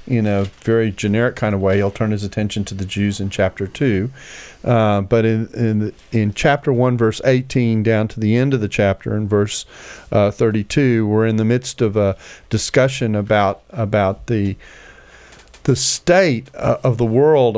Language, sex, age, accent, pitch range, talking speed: English, male, 40-59, American, 100-125 Hz, 180 wpm